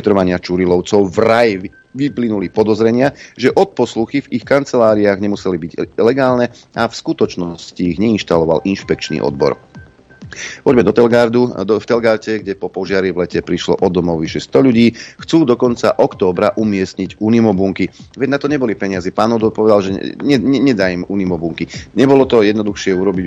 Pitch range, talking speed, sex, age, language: 95-120 Hz, 150 wpm, male, 40-59, Slovak